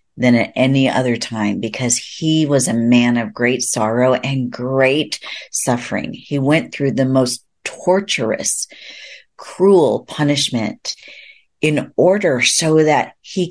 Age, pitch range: 40-59, 125-155 Hz